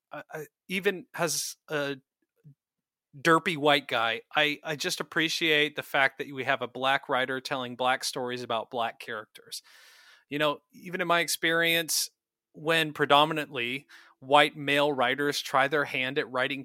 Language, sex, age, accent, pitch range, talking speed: English, male, 30-49, American, 125-150 Hz, 150 wpm